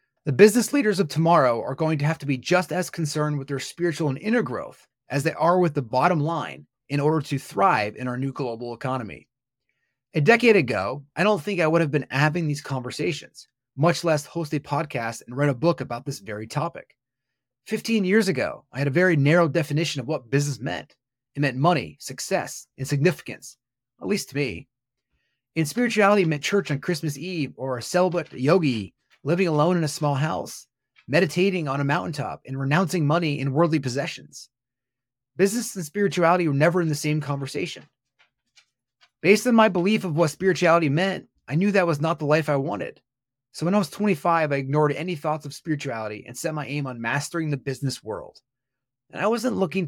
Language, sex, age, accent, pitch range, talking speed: English, male, 30-49, American, 130-175 Hz, 195 wpm